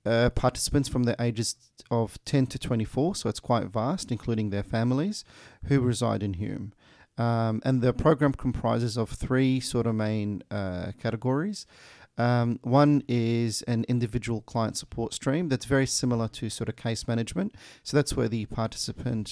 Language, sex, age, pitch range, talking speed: English, male, 40-59, 115-125 Hz, 165 wpm